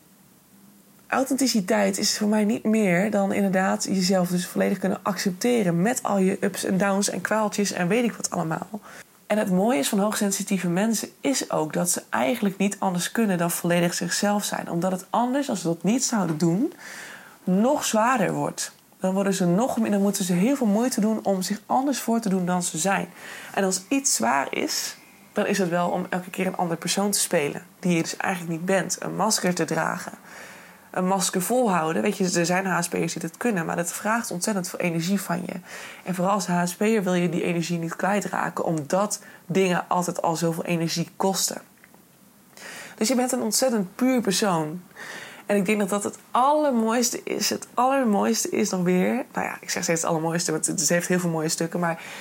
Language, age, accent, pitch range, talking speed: Dutch, 20-39, Dutch, 180-215 Hz, 200 wpm